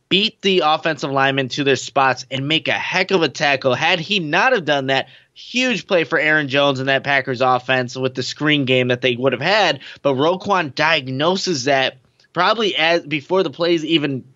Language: English